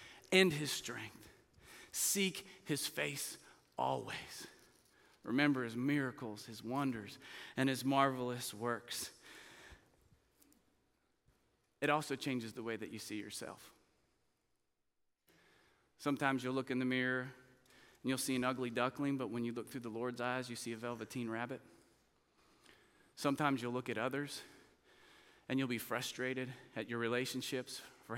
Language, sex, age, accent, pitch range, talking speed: English, male, 30-49, American, 120-145 Hz, 135 wpm